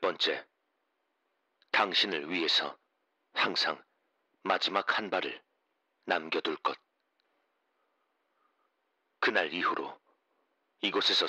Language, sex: Korean, male